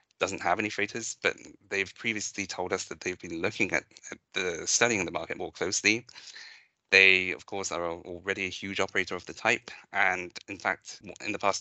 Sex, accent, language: male, British, English